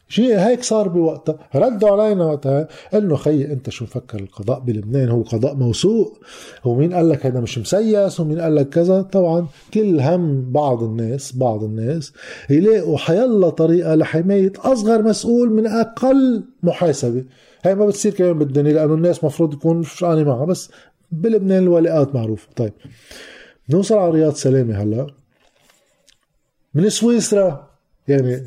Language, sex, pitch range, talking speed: Arabic, male, 135-185 Hz, 140 wpm